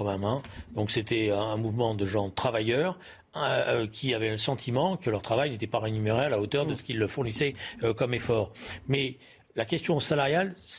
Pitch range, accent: 115-145 Hz, French